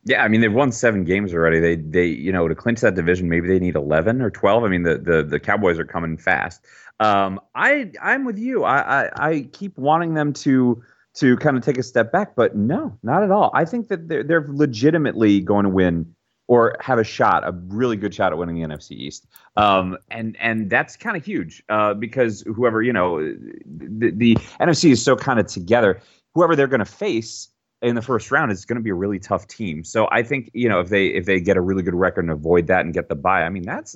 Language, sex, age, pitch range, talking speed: English, male, 30-49, 90-125 Hz, 245 wpm